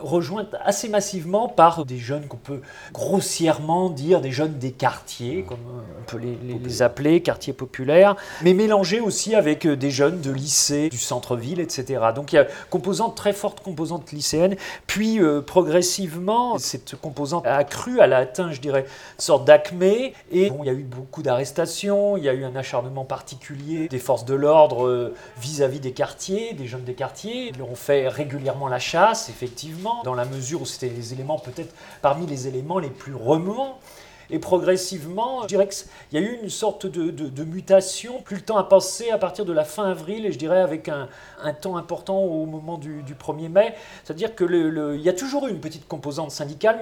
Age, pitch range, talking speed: 40-59, 140-195 Hz, 195 wpm